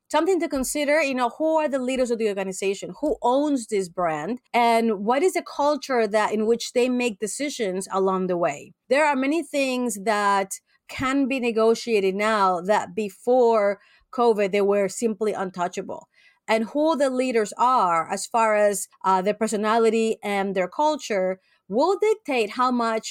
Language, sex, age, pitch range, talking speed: English, female, 30-49, 200-255 Hz, 165 wpm